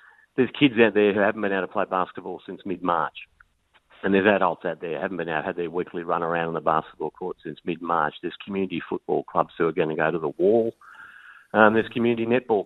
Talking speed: 230 wpm